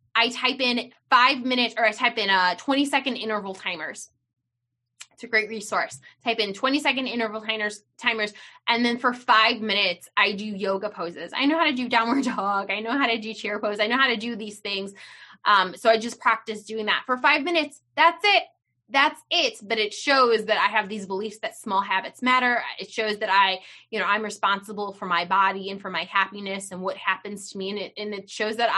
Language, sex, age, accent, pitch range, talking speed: English, female, 20-39, American, 200-245 Hz, 225 wpm